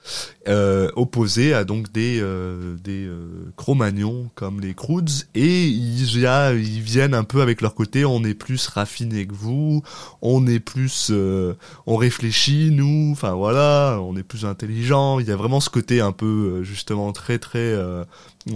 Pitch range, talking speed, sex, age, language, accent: 100-140 Hz, 175 wpm, male, 20-39, French, French